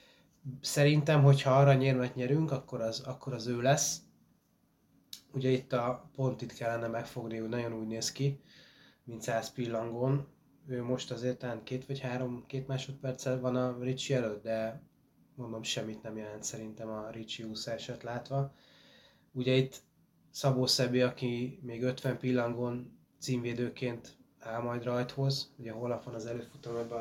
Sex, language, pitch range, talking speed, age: male, Hungarian, 115-130 Hz, 145 wpm, 20-39